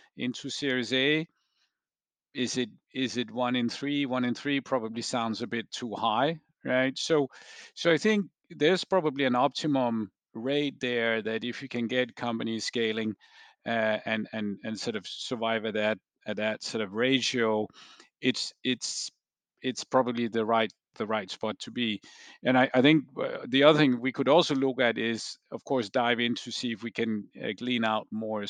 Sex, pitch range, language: male, 110-135 Hz, English